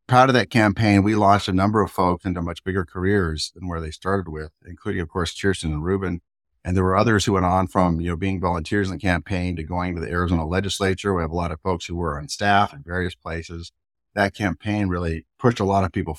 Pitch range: 90-120 Hz